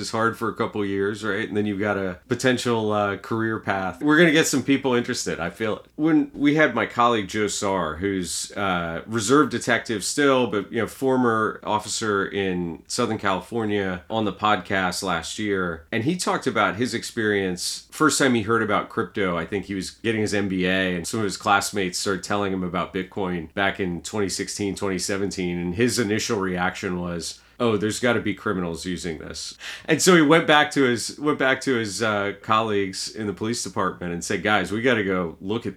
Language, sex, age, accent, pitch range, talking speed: English, male, 40-59, American, 95-125 Hz, 205 wpm